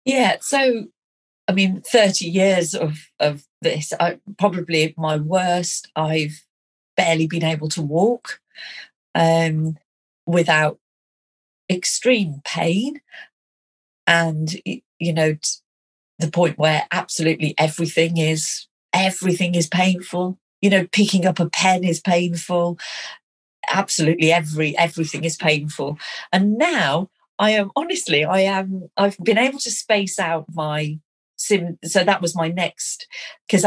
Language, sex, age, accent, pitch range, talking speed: English, female, 40-59, British, 160-195 Hz, 125 wpm